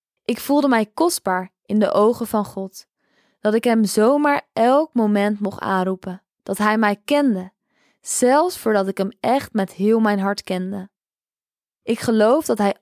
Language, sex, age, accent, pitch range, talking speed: Dutch, female, 20-39, Dutch, 195-250 Hz, 165 wpm